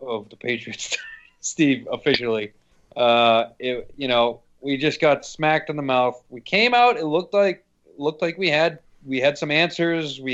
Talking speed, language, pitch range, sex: 175 wpm, English, 120-145 Hz, male